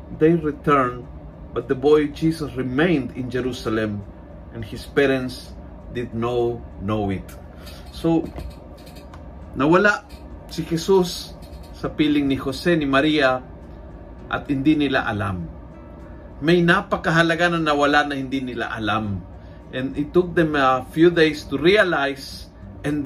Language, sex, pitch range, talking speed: Filipino, male, 95-155 Hz, 130 wpm